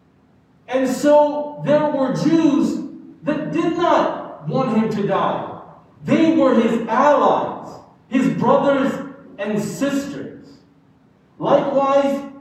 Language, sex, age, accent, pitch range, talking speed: English, male, 40-59, American, 235-290 Hz, 100 wpm